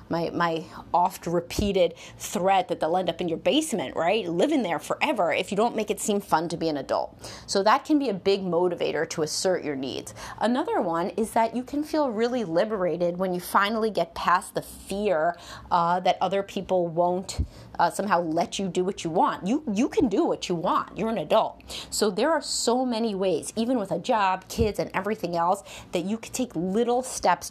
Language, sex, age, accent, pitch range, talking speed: English, female, 30-49, American, 175-230 Hz, 210 wpm